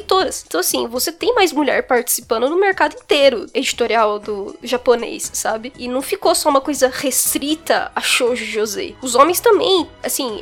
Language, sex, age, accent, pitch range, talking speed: Portuguese, female, 10-29, Brazilian, 235-300 Hz, 175 wpm